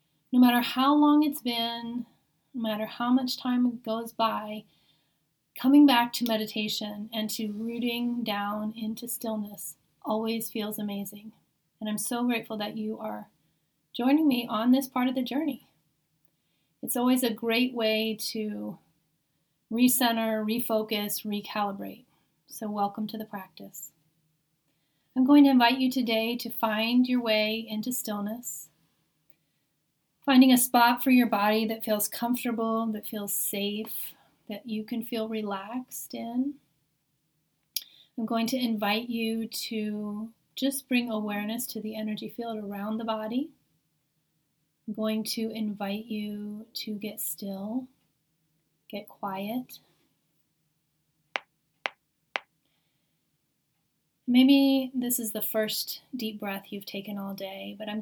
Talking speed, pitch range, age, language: 130 wpm, 200-235 Hz, 30-49, English